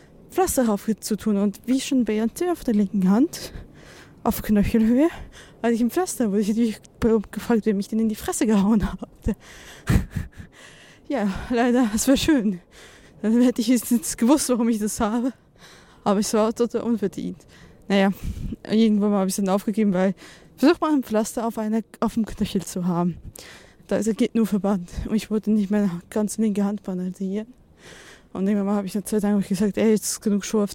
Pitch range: 200-235 Hz